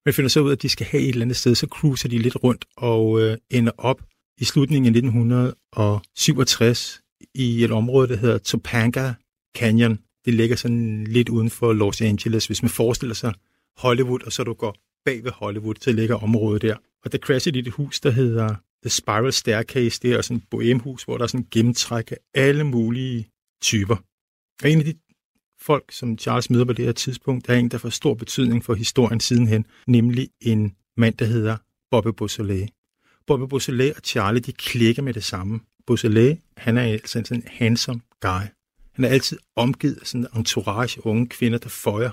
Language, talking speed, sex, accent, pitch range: Danish, 200 wpm, male, native, 110-130 Hz